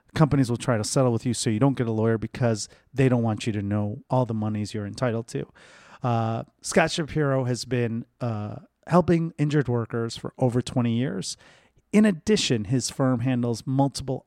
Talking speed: 190 wpm